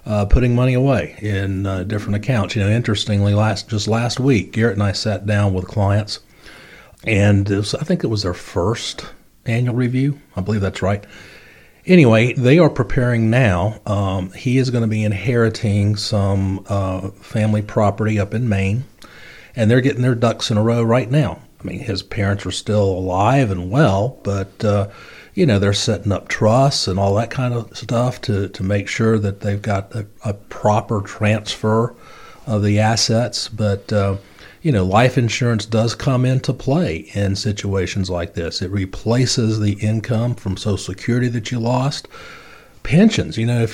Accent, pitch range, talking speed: American, 100-125 Hz, 180 wpm